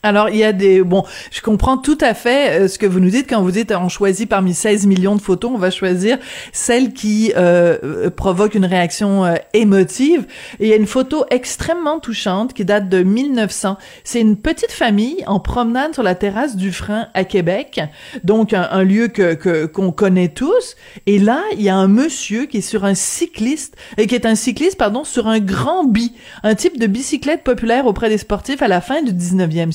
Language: French